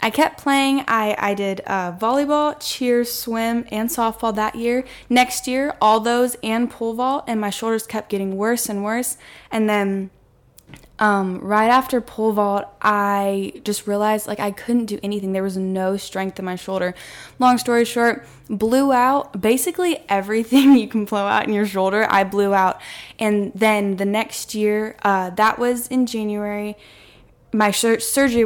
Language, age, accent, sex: English, 10-29, American, female